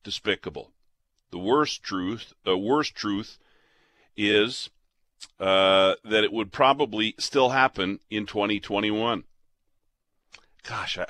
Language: English